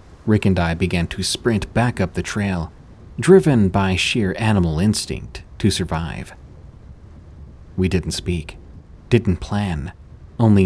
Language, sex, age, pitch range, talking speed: English, male, 30-49, 85-105 Hz, 130 wpm